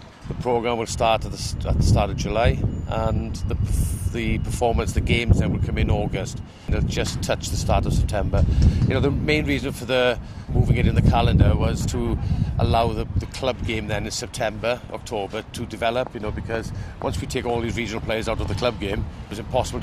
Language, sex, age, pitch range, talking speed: English, male, 40-59, 105-120 Hz, 210 wpm